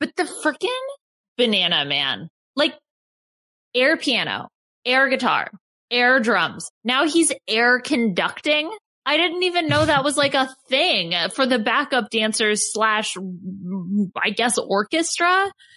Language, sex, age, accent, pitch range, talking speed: English, female, 20-39, American, 205-280 Hz, 125 wpm